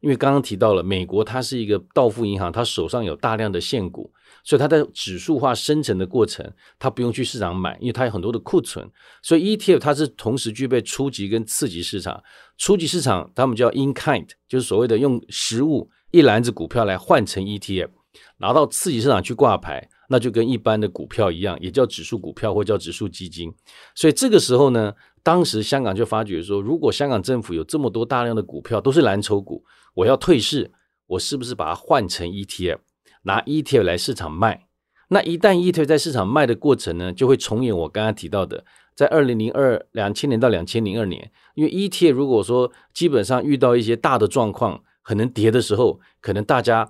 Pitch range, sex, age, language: 100-130 Hz, male, 50-69, Chinese